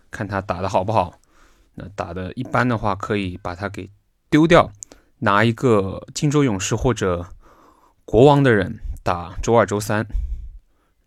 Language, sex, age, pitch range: Chinese, male, 20-39, 90-110 Hz